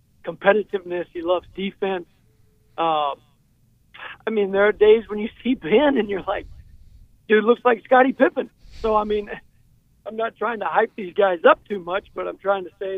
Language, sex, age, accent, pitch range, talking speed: English, male, 50-69, American, 170-220 Hz, 185 wpm